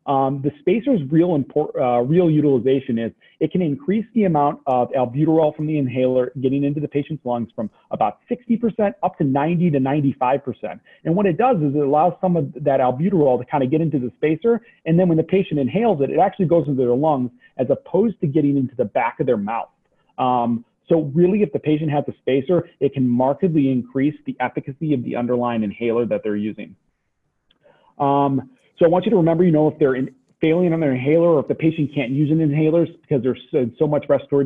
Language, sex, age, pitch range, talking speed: English, male, 30-49, 125-160 Hz, 215 wpm